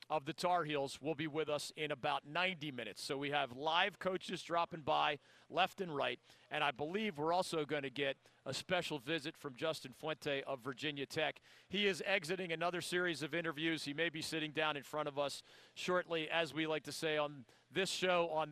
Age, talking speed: 40-59, 210 wpm